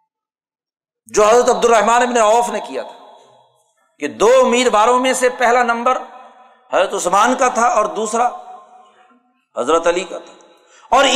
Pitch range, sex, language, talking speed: 205-265 Hz, male, Urdu, 145 wpm